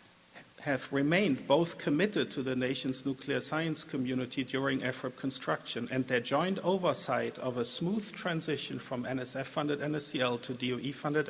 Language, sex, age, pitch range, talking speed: English, male, 50-69, 130-160 Hz, 140 wpm